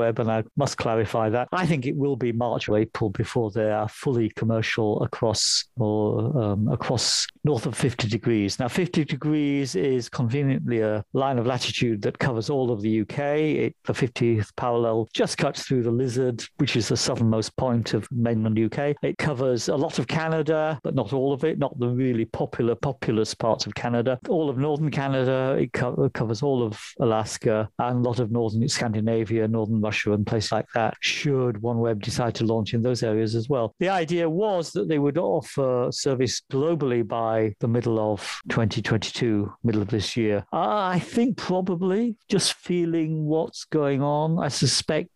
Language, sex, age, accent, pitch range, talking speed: English, male, 50-69, British, 115-145 Hz, 180 wpm